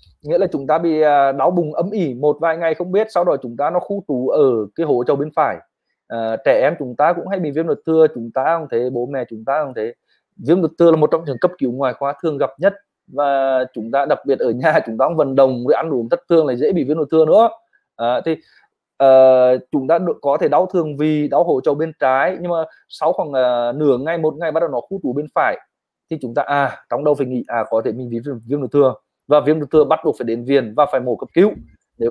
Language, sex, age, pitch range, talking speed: Vietnamese, male, 20-39, 135-170 Hz, 275 wpm